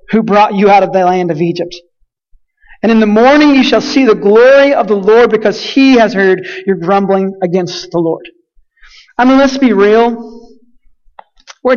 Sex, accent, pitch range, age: male, American, 190-245 Hz, 40-59